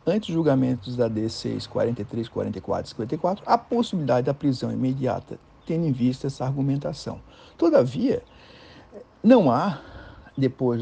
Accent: Brazilian